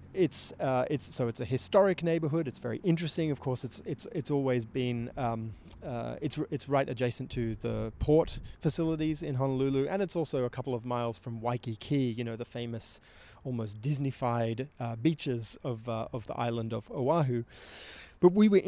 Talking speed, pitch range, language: 185 wpm, 120-155 Hz, Finnish